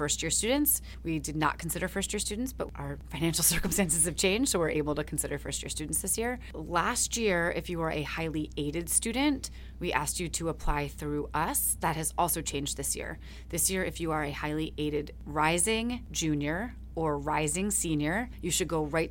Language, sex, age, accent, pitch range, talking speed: English, female, 30-49, American, 150-180 Hz, 195 wpm